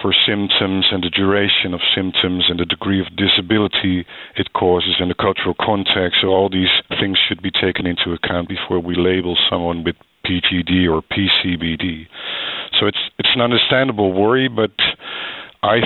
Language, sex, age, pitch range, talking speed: English, male, 50-69, 90-100 Hz, 165 wpm